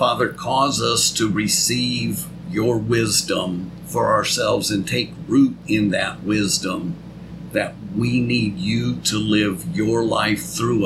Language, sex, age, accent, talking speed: English, male, 50-69, American, 135 wpm